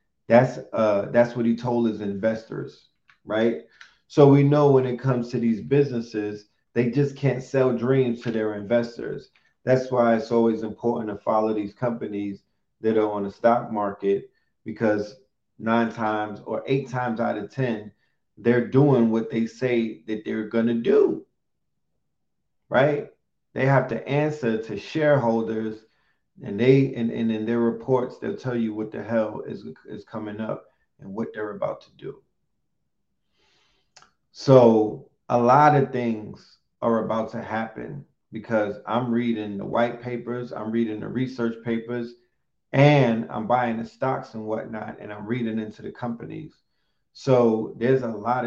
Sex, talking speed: male, 155 wpm